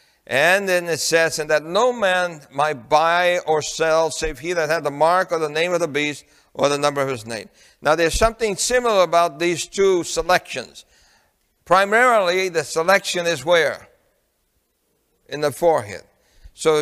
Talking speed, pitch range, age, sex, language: 170 wpm, 145-180 Hz, 60-79, male, English